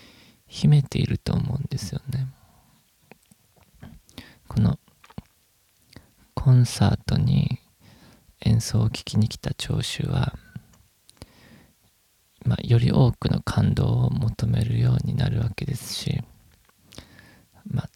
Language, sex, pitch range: Japanese, male, 110-135 Hz